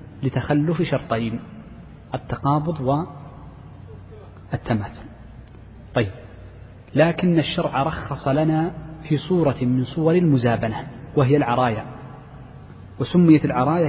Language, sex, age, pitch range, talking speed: Arabic, male, 40-59, 125-155 Hz, 80 wpm